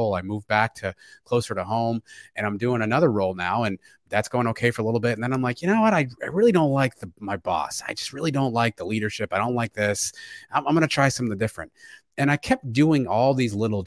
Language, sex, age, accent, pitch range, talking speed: English, male, 30-49, American, 105-135 Hz, 265 wpm